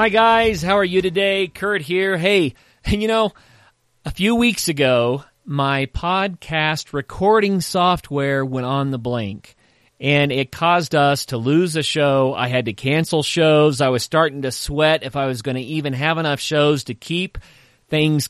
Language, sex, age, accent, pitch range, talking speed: English, male, 40-59, American, 125-160 Hz, 175 wpm